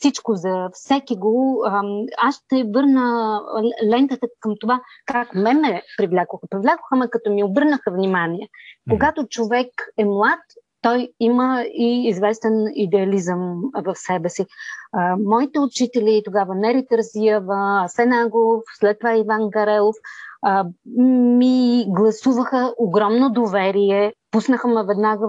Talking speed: 120 wpm